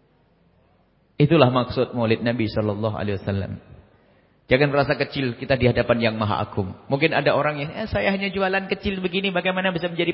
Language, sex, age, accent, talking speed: English, male, 40-59, Indonesian, 160 wpm